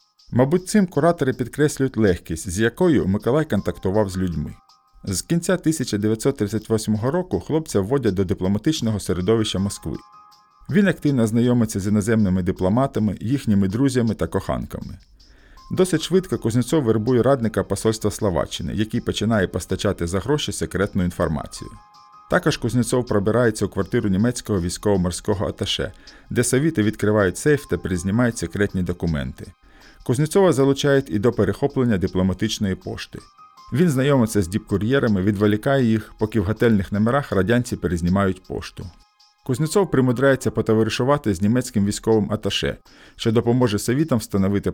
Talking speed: 125 wpm